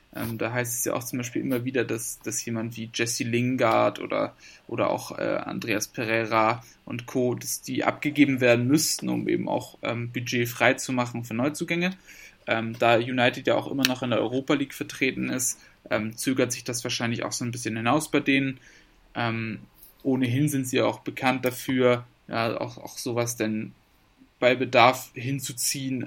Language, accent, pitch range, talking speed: German, German, 120-135 Hz, 185 wpm